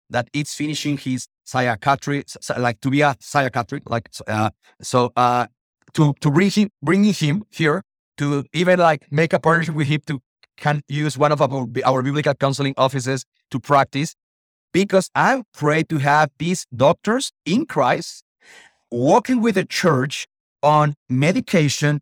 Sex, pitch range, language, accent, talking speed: male, 135-175 Hz, English, Mexican, 150 wpm